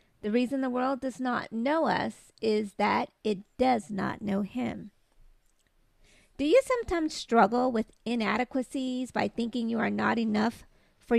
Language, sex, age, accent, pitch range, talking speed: English, female, 40-59, American, 215-265 Hz, 150 wpm